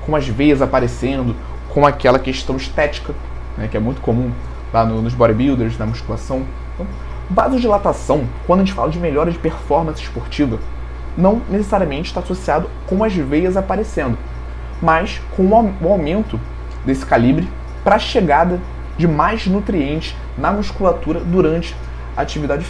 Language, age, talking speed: Portuguese, 20-39, 140 wpm